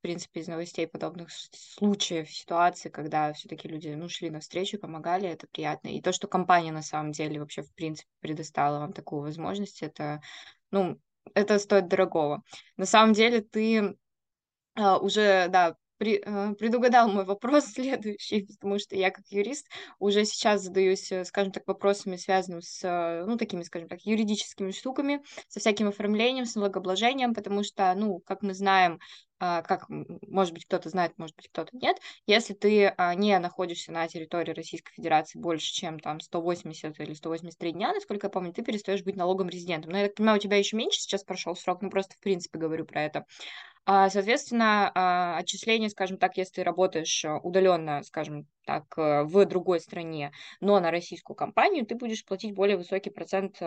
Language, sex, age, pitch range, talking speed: Russian, female, 20-39, 165-205 Hz, 165 wpm